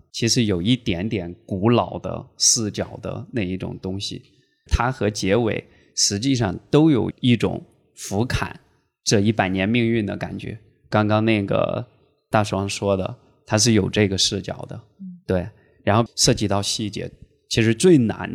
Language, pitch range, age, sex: Chinese, 100-120 Hz, 20-39, male